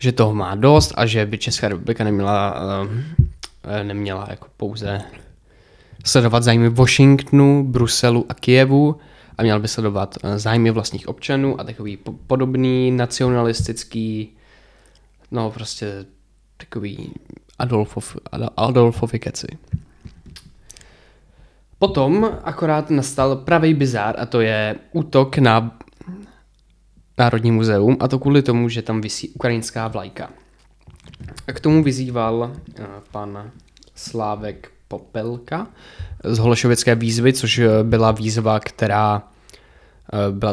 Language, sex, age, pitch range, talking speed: Czech, male, 20-39, 105-125 Hz, 105 wpm